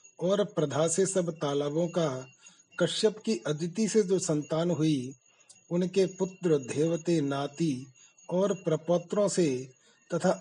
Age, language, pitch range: 40-59, Hindi, 155-180 Hz